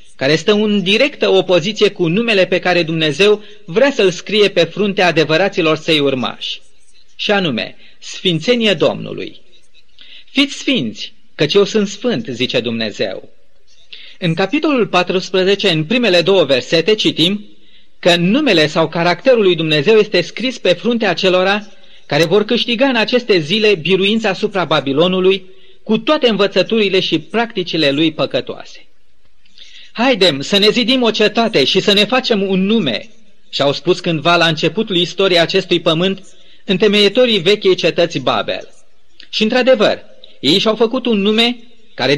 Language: Romanian